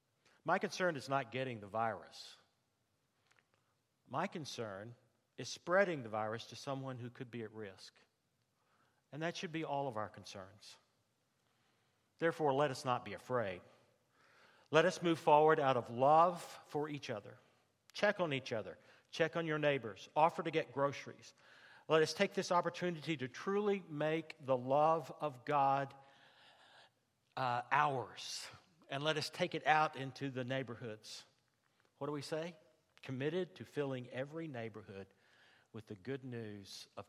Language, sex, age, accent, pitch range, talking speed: English, male, 50-69, American, 120-165 Hz, 150 wpm